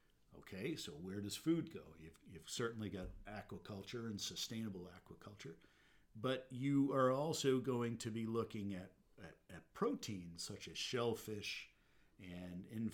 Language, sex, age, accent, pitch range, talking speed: English, male, 50-69, American, 95-110 Hz, 145 wpm